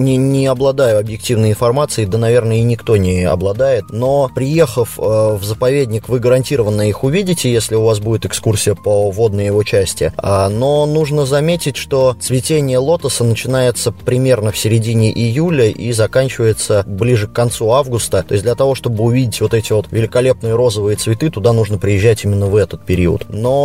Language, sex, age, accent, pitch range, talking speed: Russian, male, 20-39, native, 100-130 Hz, 170 wpm